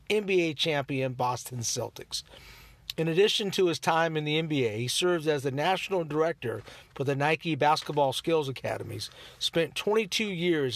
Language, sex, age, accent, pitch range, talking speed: English, male, 50-69, American, 130-165 Hz, 150 wpm